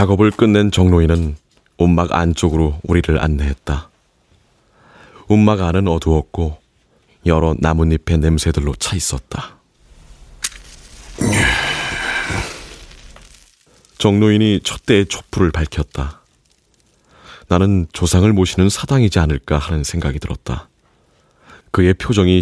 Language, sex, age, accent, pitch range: Korean, male, 30-49, native, 80-100 Hz